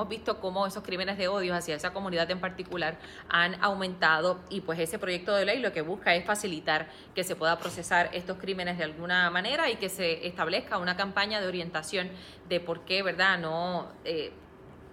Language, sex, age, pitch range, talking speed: English, female, 20-39, 170-205 Hz, 190 wpm